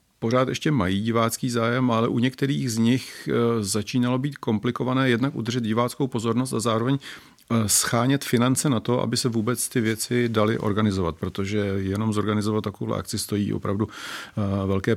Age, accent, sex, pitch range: 40-59, native, male, 105-125 Hz